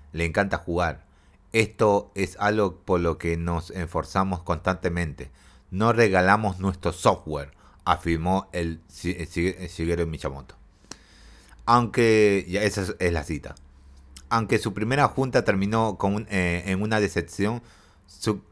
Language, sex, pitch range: Spanish, male, 85-110 Hz